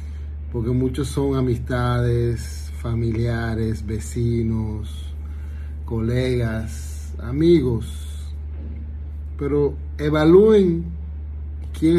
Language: Spanish